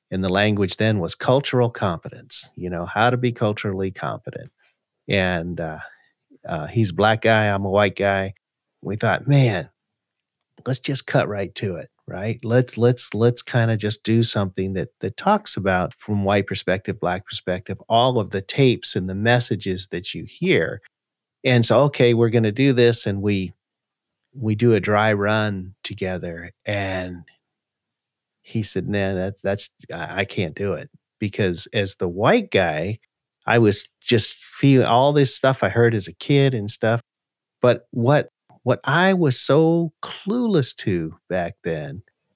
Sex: male